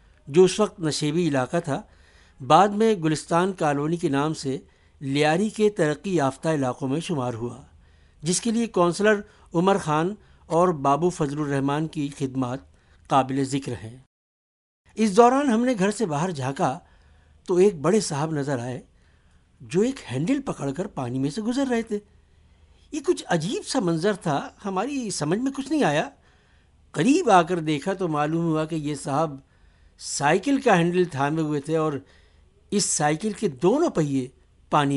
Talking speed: 165 wpm